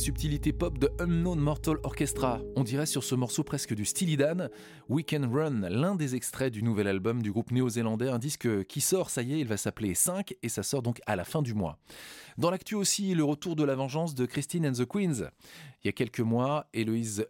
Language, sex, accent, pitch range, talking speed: French, male, French, 105-145 Hz, 225 wpm